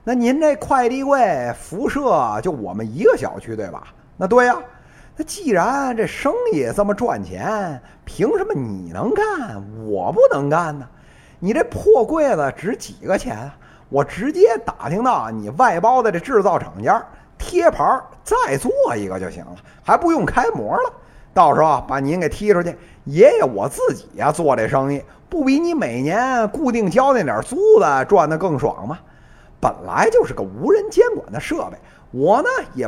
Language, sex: Chinese, male